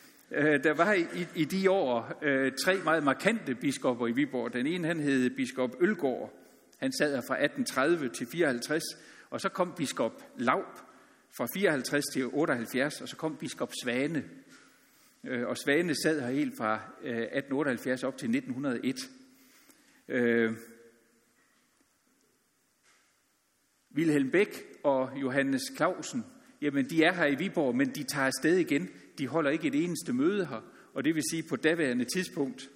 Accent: native